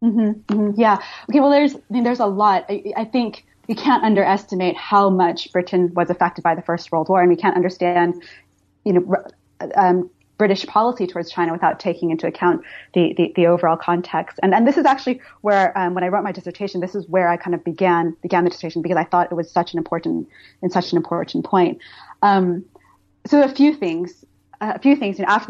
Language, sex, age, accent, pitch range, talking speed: English, female, 30-49, American, 175-205 Hz, 220 wpm